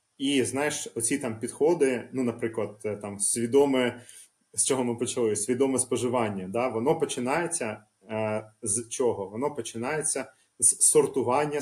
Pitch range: 115-145 Hz